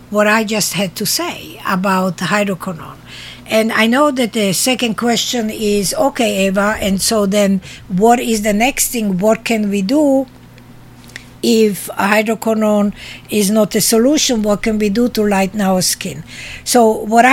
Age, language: 60-79, English